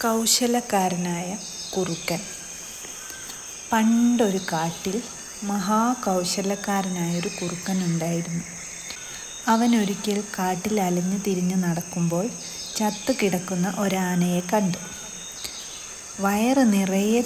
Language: Malayalam